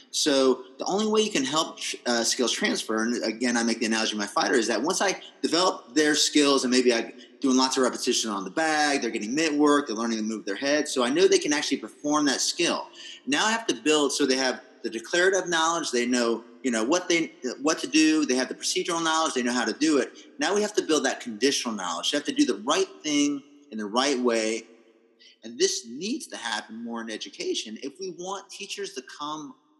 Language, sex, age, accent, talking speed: English, male, 30-49, American, 240 wpm